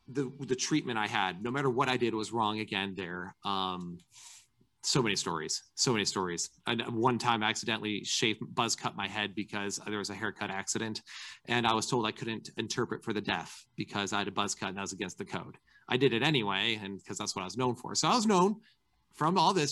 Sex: male